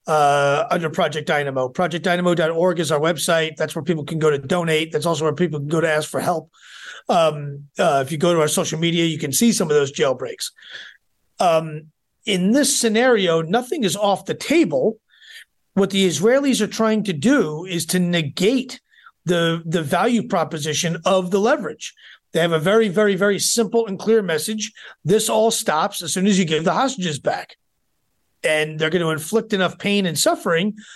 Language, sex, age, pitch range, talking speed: English, male, 40-59, 165-215 Hz, 190 wpm